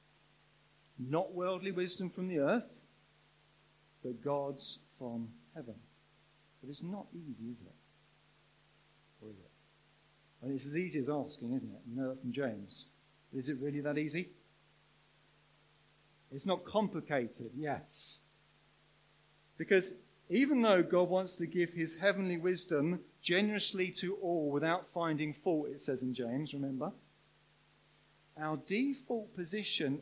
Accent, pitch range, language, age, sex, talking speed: British, 135-175 Hz, English, 40-59, male, 125 wpm